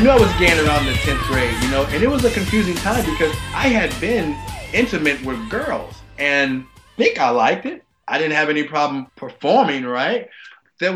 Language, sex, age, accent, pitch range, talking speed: English, male, 20-39, American, 135-170 Hz, 210 wpm